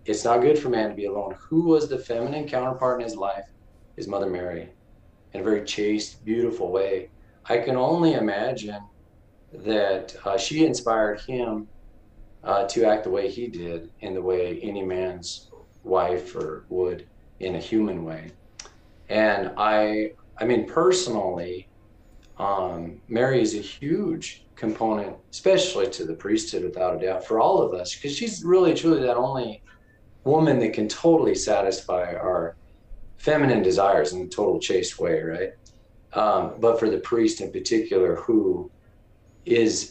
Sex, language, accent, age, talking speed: male, English, American, 40-59, 155 wpm